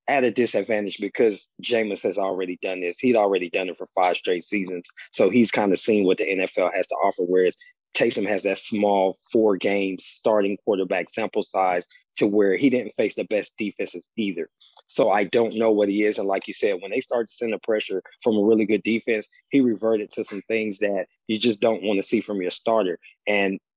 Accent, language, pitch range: American, English, 100-130 Hz